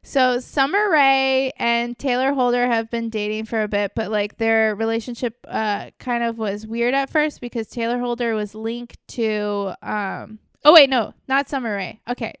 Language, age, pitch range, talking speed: English, 20-39, 210-245 Hz, 180 wpm